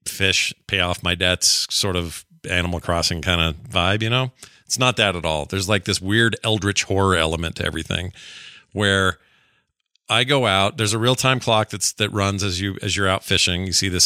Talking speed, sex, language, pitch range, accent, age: 210 wpm, male, English, 90-110 Hz, American, 40-59